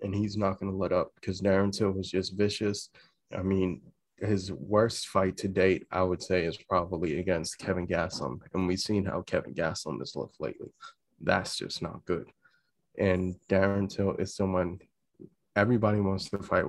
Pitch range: 95-105 Hz